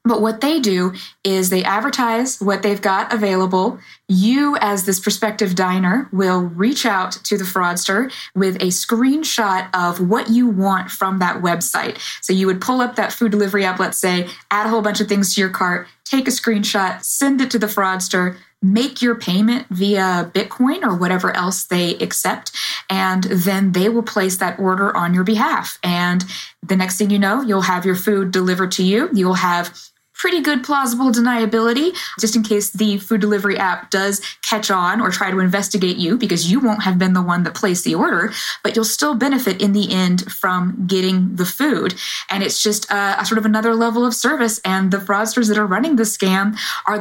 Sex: female